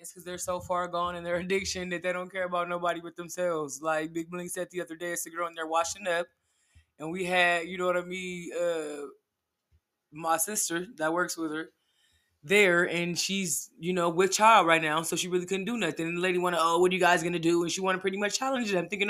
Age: 20-39